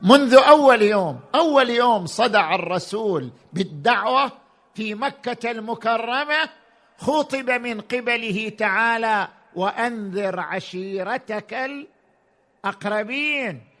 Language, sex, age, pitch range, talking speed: Arabic, male, 50-69, 205-250 Hz, 80 wpm